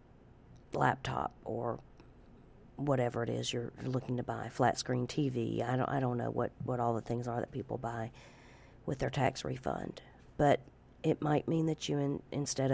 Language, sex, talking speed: English, female, 180 wpm